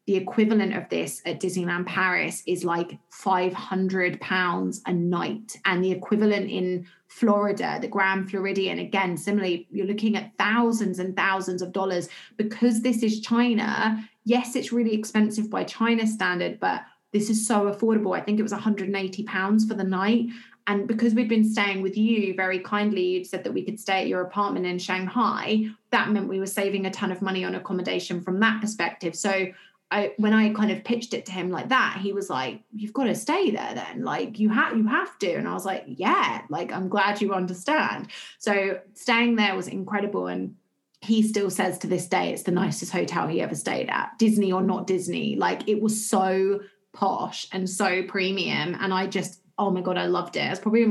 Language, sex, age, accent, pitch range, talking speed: English, female, 20-39, British, 185-215 Hz, 200 wpm